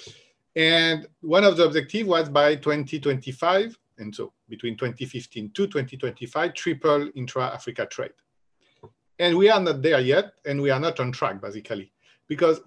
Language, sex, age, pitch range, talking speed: English, male, 50-69, 135-165 Hz, 145 wpm